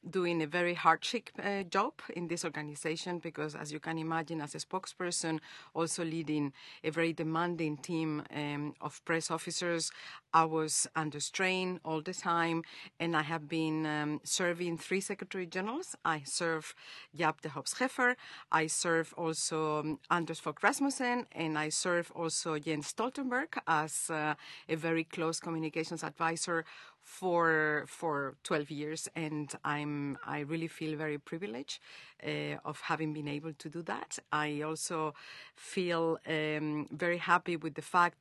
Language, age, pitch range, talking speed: English, 50-69, 155-180 Hz, 150 wpm